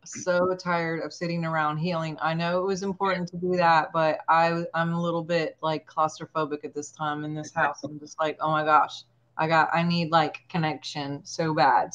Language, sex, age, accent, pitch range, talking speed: English, female, 30-49, American, 160-195 Hz, 210 wpm